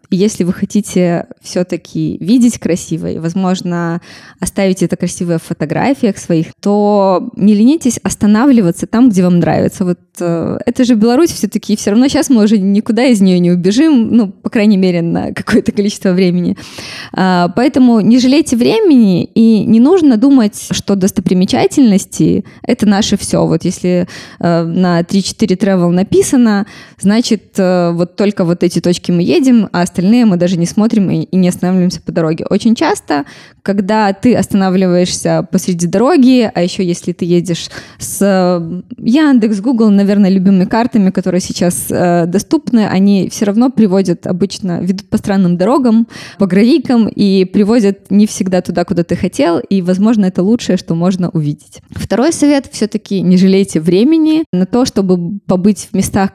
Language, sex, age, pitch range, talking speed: Russian, female, 20-39, 180-225 Hz, 150 wpm